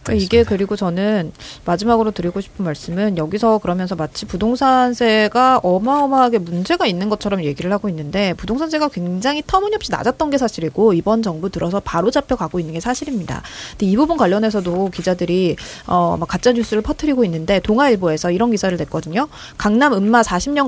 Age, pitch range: 30-49, 175-250 Hz